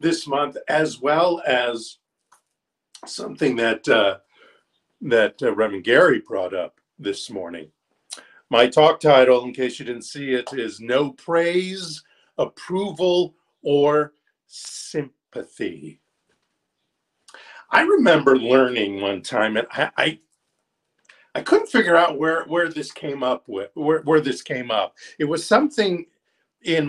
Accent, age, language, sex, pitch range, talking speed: American, 50-69, English, male, 130-175 Hz, 130 wpm